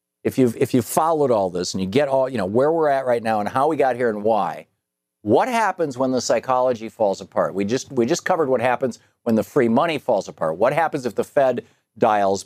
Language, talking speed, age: English, 245 wpm, 50-69